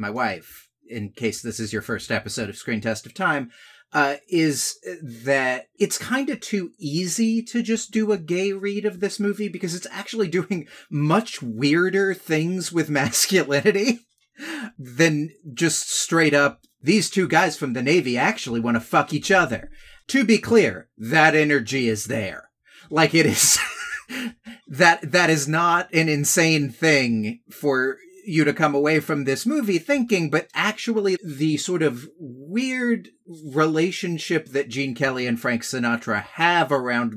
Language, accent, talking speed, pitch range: English, American, 155 wpm, 140-200 Hz